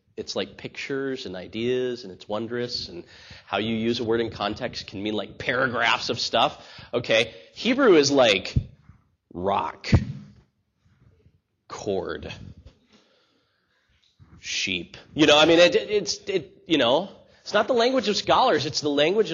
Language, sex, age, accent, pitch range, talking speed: English, male, 30-49, American, 105-145 Hz, 150 wpm